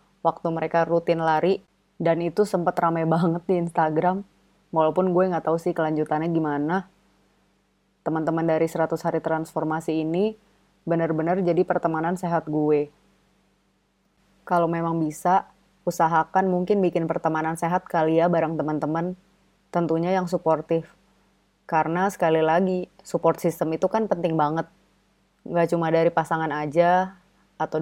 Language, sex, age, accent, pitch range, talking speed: Indonesian, female, 20-39, native, 160-180 Hz, 125 wpm